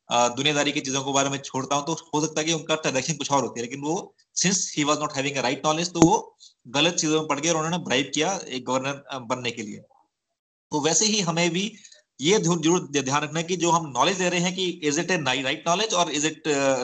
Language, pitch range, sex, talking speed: Hindi, 140-175 Hz, male, 235 wpm